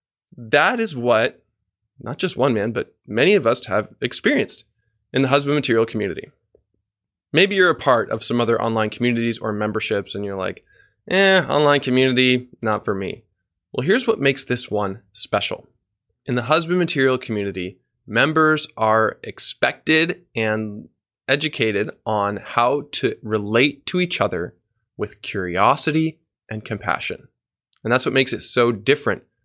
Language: English